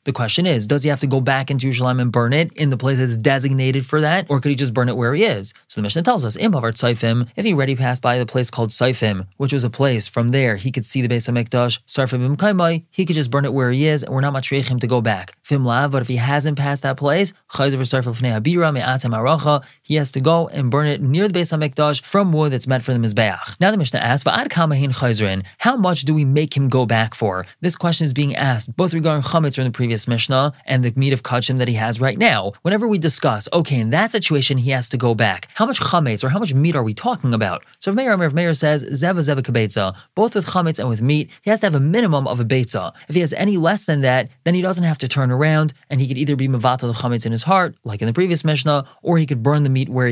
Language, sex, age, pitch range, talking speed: English, male, 20-39, 125-160 Hz, 255 wpm